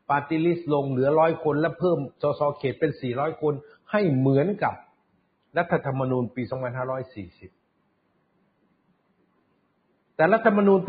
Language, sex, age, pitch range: Thai, male, 60-79, 125-160 Hz